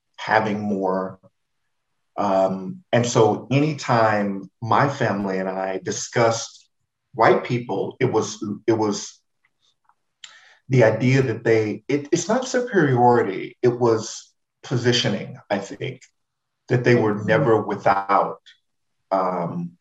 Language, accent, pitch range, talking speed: English, American, 100-130 Hz, 105 wpm